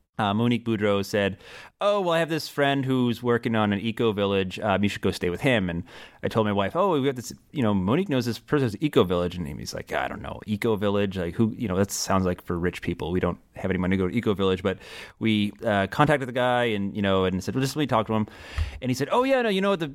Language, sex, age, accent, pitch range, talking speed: English, male, 30-49, American, 100-120 Hz, 280 wpm